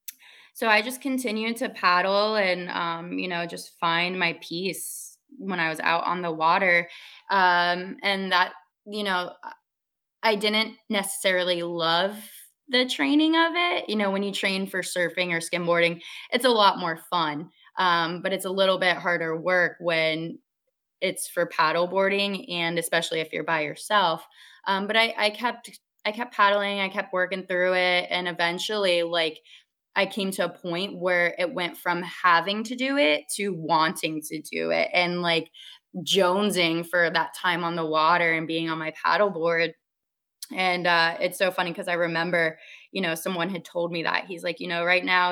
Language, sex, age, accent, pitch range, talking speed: English, female, 20-39, American, 165-195 Hz, 180 wpm